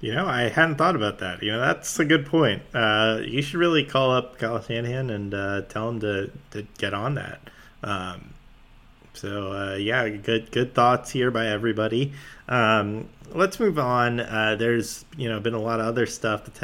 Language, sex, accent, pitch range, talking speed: English, male, American, 105-130 Hz, 200 wpm